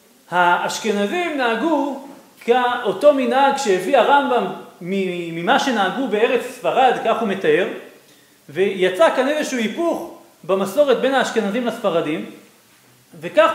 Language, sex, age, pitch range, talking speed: Hebrew, male, 40-59, 215-310 Hz, 95 wpm